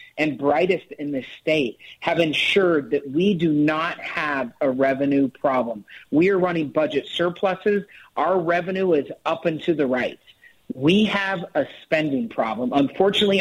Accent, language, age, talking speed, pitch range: American, English, 50-69, 150 wpm, 140-175 Hz